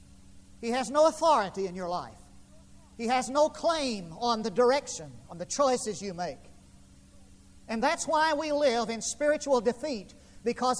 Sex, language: male, English